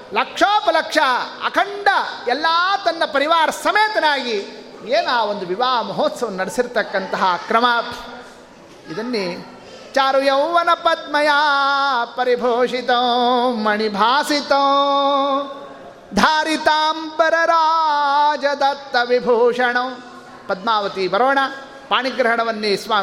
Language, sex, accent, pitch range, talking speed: Kannada, male, native, 205-275 Hz, 65 wpm